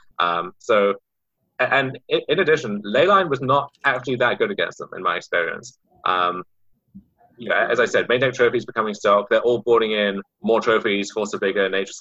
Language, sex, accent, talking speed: English, male, British, 180 wpm